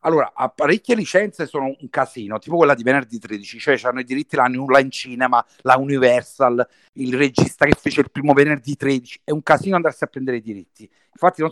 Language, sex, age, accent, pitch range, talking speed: Italian, male, 50-69, native, 125-165 Hz, 200 wpm